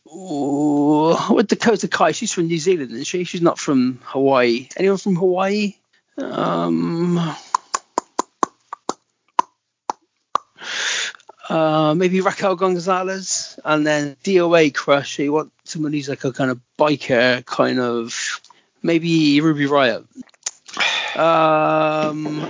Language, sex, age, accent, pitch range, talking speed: English, male, 40-59, British, 140-190 Hz, 110 wpm